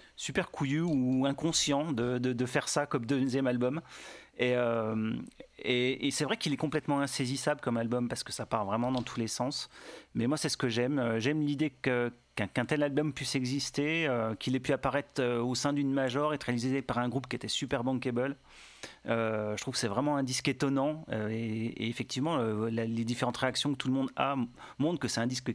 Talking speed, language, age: 225 wpm, French, 30-49